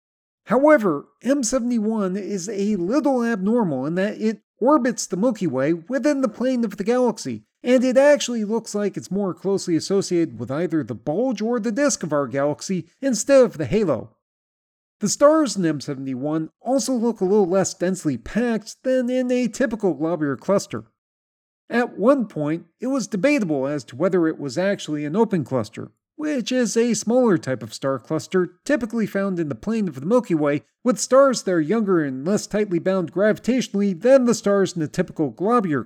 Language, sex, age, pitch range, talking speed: English, male, 40-59, 160-240 Hz, 180 wpm